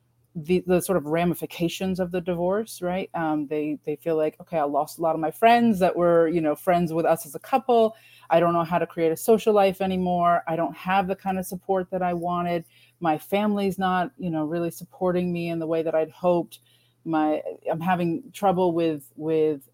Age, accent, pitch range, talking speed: 30-49, American, 155-185 Hz, 220 wpm